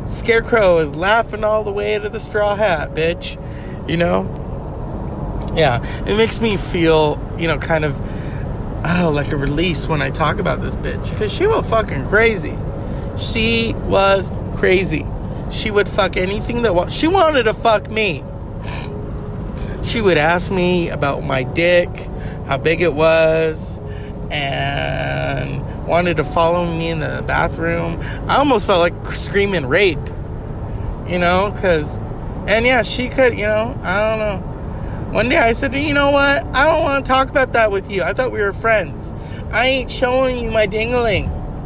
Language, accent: English, American